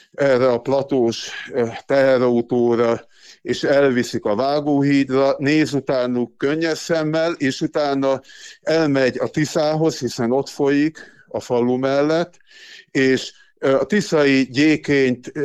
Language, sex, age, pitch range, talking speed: Hungarian, male, 50-69, 125-150 Hz, 105 wpm